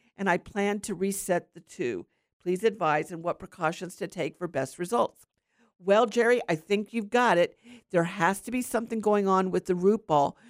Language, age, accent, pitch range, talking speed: English, 50-69, American, 175-225 Hz, 200 wpm